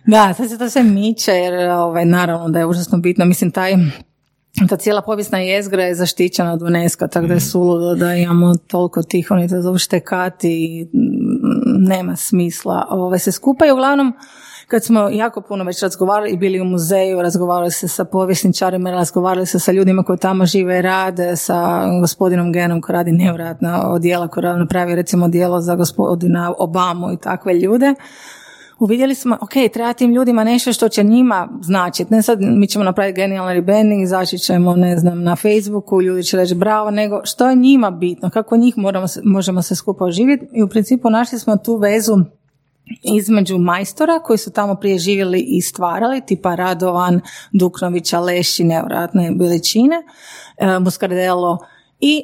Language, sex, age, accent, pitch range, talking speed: Croatian, female, 30-49, native, 175-210 Hz, 165 wpm